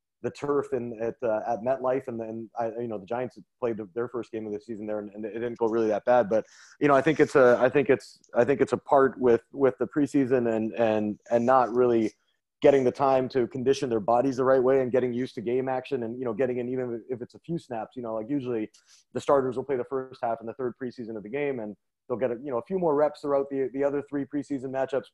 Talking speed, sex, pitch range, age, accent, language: 280 wpm, male, 120-140 Hz, 30-49, American, English